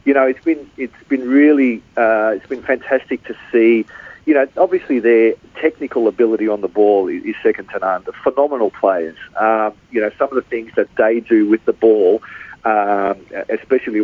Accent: Australian